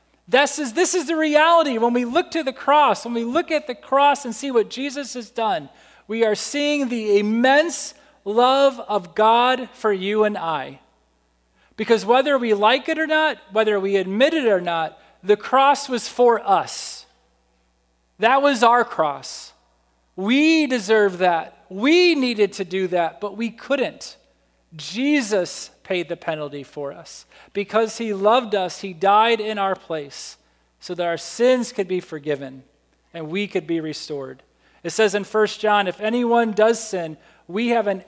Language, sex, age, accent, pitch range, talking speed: English, male, 40-59, American, 170-245 Hz, 170 wpm